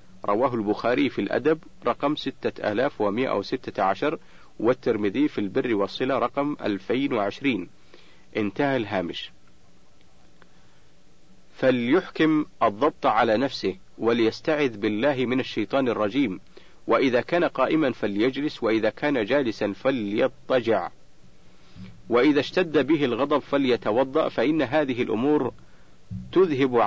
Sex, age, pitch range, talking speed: male, 50-69, 100-145 Hz, 95 wpm